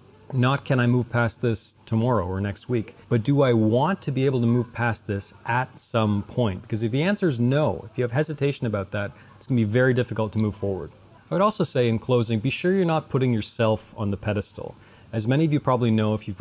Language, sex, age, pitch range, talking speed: English, male, 30-49, 105-125 Hz, 250 wpm